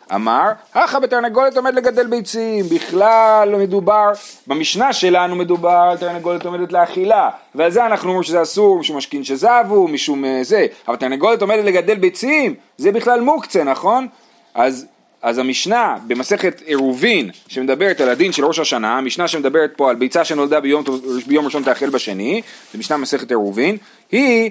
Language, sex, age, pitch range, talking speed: Hebrew, male, 30-49, 145-235 Hz, 140 wpm